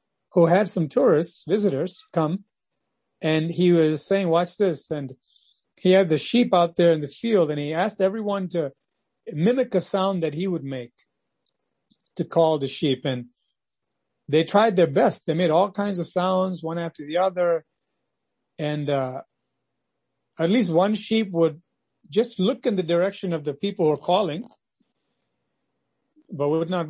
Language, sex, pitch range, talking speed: English, male, 150-185 Hz, 165 wpm